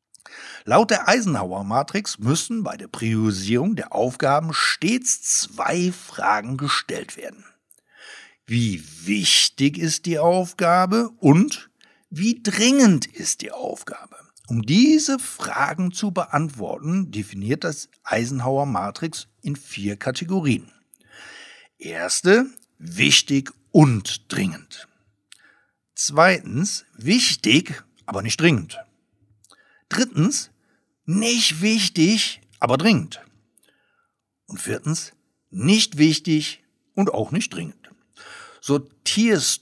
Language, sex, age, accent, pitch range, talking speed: German, male, 60-79, German, 125-200 Hz, 90 wpm